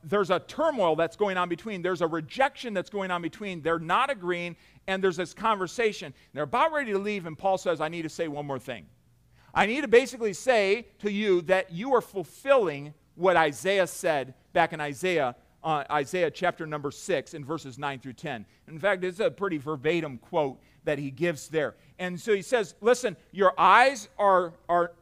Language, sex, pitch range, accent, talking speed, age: English, male, 140-190 Hz, American, 200 wpm, 40-59